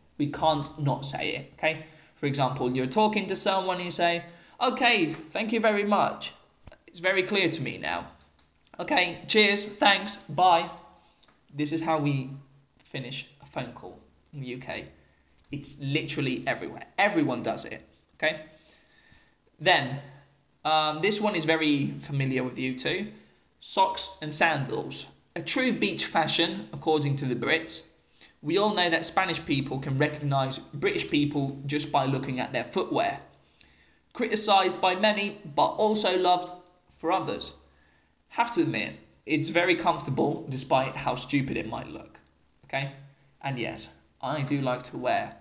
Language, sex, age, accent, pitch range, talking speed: English, male, 20-39, British, 130-180 Hz, 150 wpm